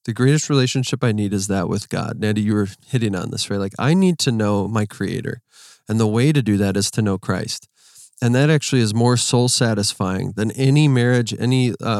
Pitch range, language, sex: 105-130 Hz, English, male